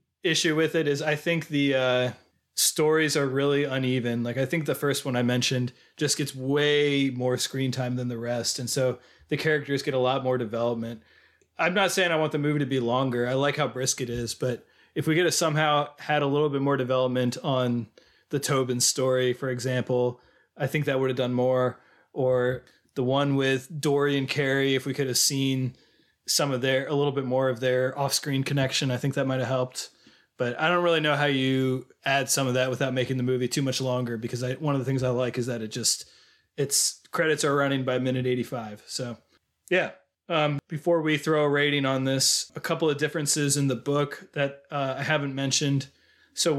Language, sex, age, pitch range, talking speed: English, male, 20-39, 125-145 Hz, 220 wpm